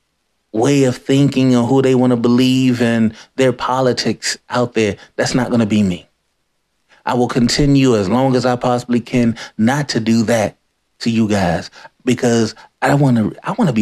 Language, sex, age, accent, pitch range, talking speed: English, male, 30-49, American, 120-145 Hz, 190 wpm